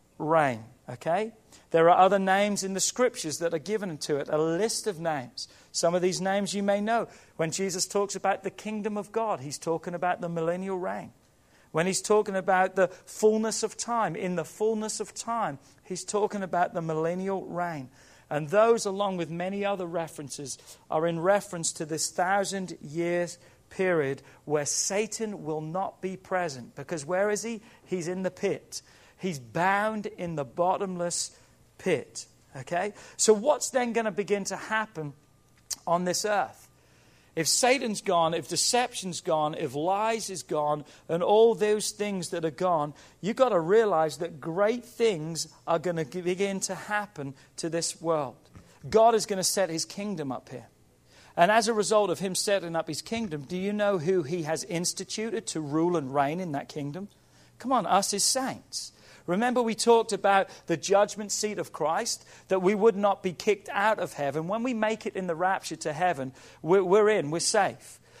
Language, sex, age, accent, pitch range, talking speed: English, male, 40-59, British, 165-205 Hz, 180 wpm